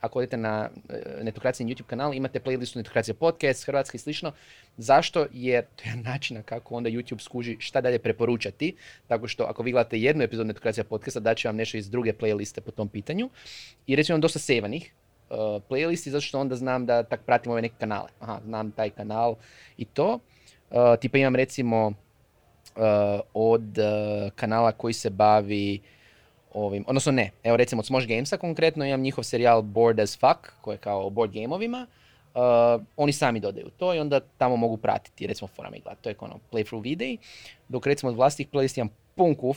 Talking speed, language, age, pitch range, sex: 180 wpm, Croatian, 20-39, 110-135 Hz, male